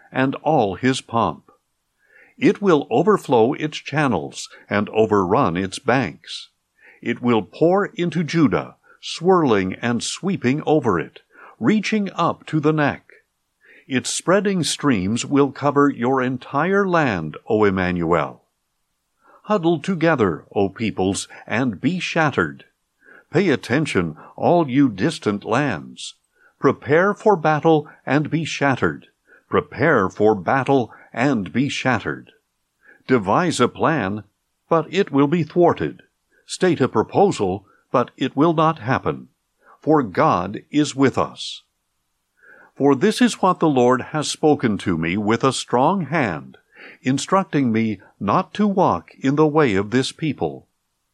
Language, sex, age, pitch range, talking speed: English, male, 60-79, 110-165 Hz, 130 wpm